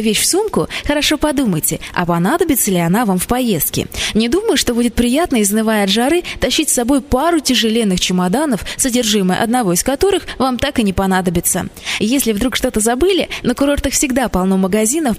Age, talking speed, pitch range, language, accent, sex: 20-39, 175 wpm, 200-275 Hz, Russian, native, female